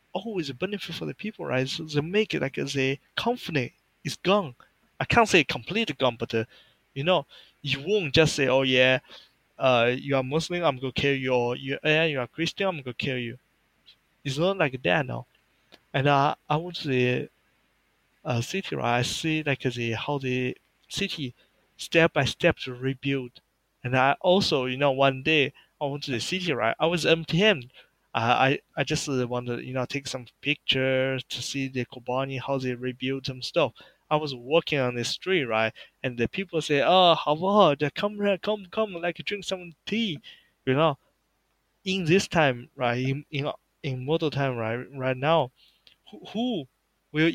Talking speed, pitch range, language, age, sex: 190 wpm, 130-165 Hz, English, 20-39, male